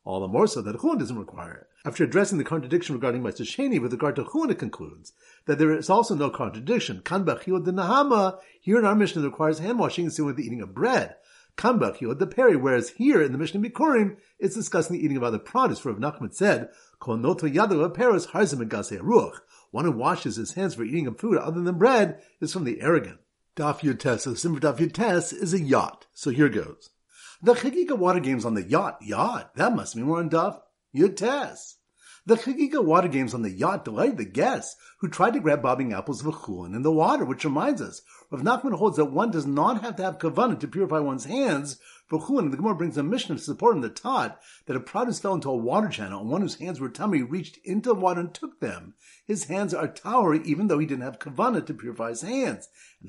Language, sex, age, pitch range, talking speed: English, male, 50-69, 140-210 Hz, 215 wpm